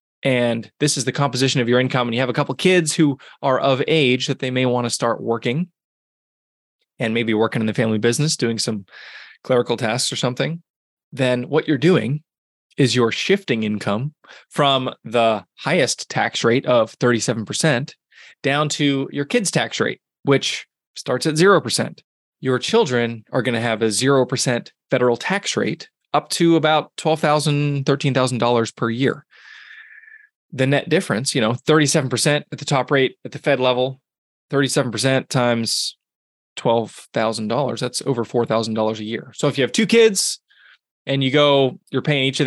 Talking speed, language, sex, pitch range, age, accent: 160 wpm, English, male, 120-150 Hz, 20-39, American